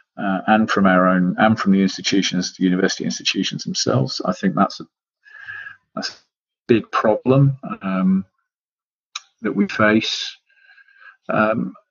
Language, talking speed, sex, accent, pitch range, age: English, 130 wpm, male, British, 95-120 Hz, 40-59